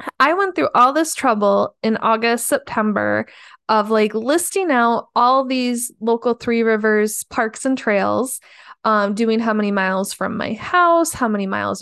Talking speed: 165 wpm